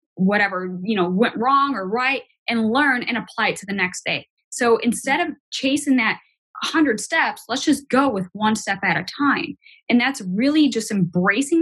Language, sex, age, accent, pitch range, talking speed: English, female, 10-29, American, 190-270 Hz, 190 wpm